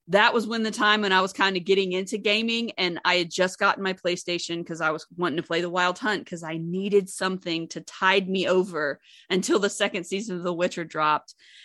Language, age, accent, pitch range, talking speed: English, 30-49, American, 170-210 Hz, 230 wpm